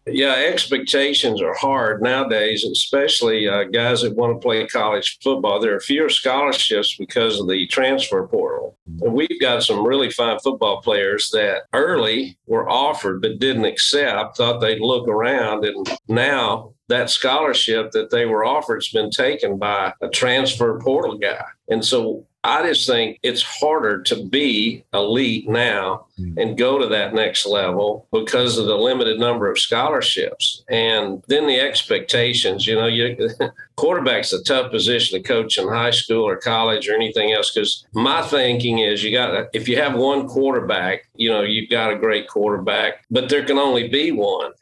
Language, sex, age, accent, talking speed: English, male, 50-69, American, 170 wpm